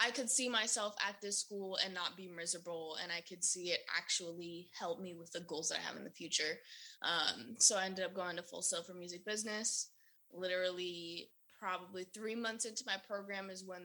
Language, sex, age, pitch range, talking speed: English, female, 20-39, 180-225 Hz, 210 wpm